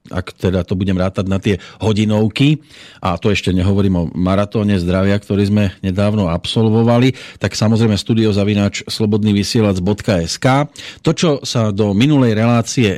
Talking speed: 145 wpm